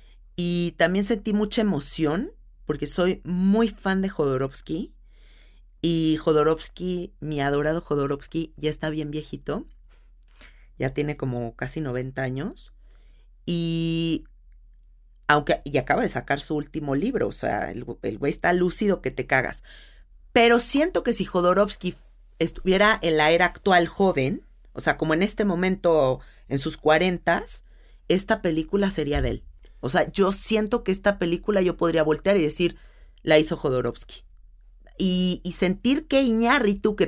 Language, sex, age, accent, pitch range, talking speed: Spanish, female, 40-59, Mexican, 145-185 Hz, 145 wpm